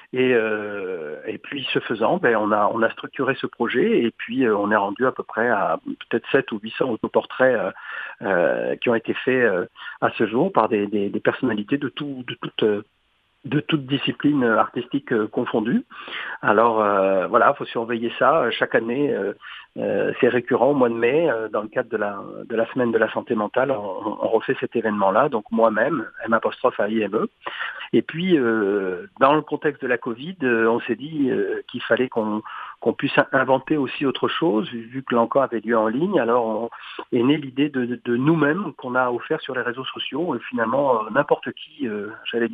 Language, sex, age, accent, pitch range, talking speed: French, male, 50-69, French, 115-150 Hz, 210 wpm